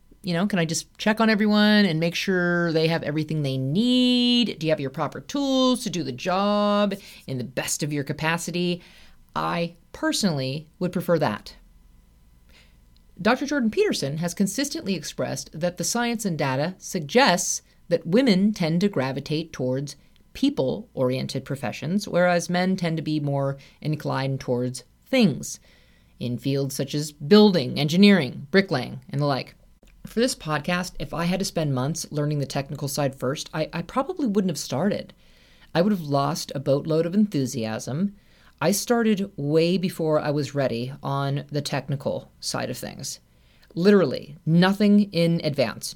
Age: 30-49